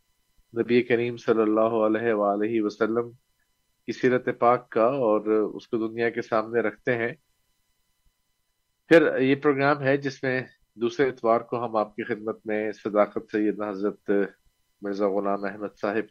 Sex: male